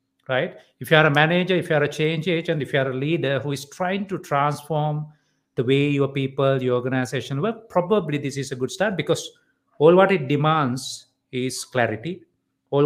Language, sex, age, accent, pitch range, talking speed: English, male, 50-69, Indian, 130-160 Hz, 200 wpm